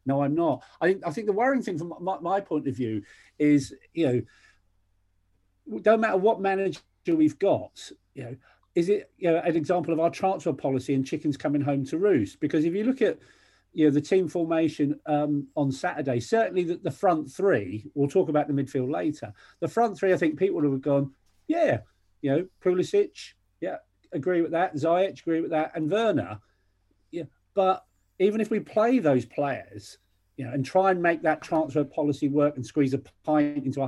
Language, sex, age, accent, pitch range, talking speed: English, male, 40-59, British, 135-190 Hz, 200 wpm